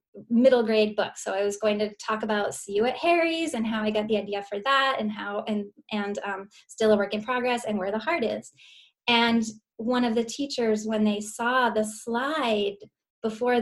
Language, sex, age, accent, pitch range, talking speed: English, female, 10-29, American, 215-260 Hz, 210 wpm